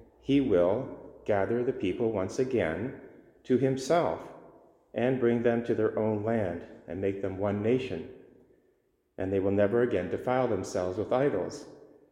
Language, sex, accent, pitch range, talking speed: English, male, American, 100-130 Hz, 150 wpm